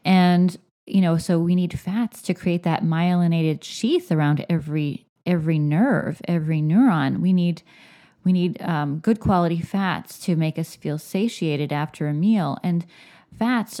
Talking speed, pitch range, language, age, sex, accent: 155 wpm, 155-190 Hz, English, 20-39, female, American